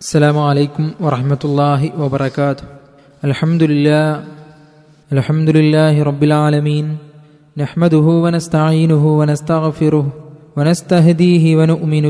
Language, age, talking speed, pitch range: Malayalam, 20-39, 80 wpm, 155-205 Hz